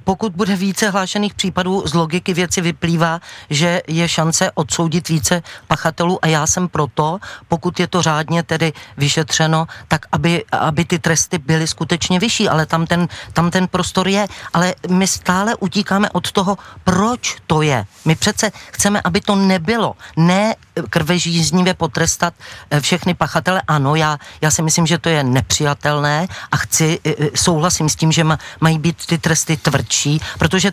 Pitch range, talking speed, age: 160-190 Hz, 155 wpm, 40-59